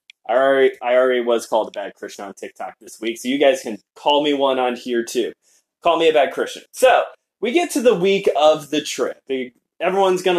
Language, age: English, 20-39